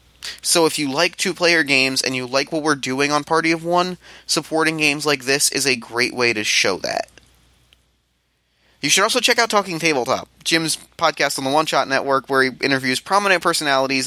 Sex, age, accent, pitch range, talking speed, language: male, 20-39, American, 125-170 Hz, 195 wpm, English